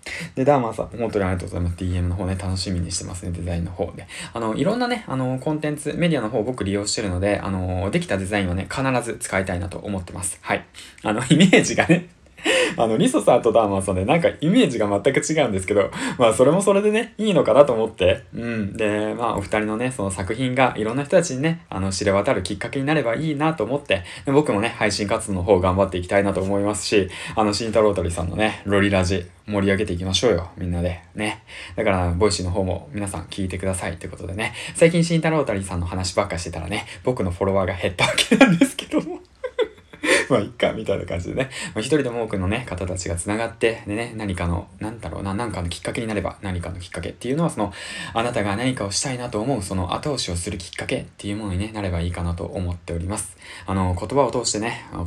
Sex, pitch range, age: male, 90-120 Hz, 20-39